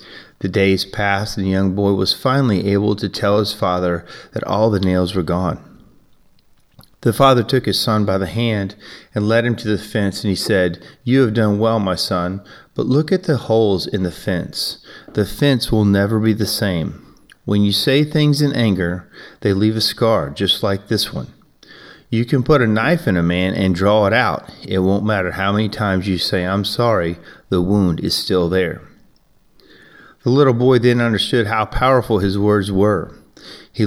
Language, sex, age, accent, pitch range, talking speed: English, male, 30-49, American, 95-110 Hz, 195 wpm